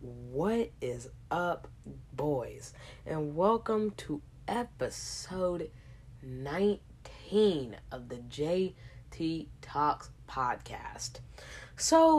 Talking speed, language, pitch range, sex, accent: 75 wpm, English, 135-205 Hz, female, American